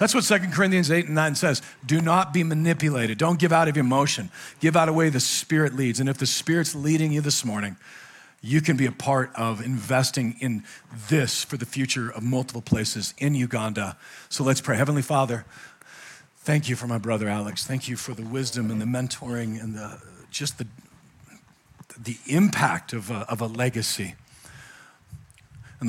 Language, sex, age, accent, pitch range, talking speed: English, male, 40-59, American, 105-130 Hz, 185 wpm